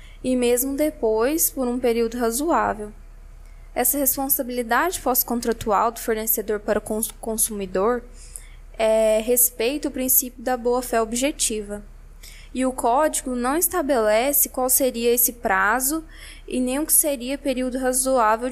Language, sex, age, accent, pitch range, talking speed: Portuguese, female, 10-29, Brazilian, 220-260 Hz, 120 wpm